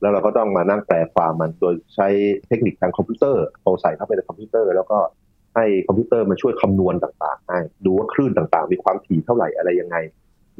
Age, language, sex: 30-49, Thai, male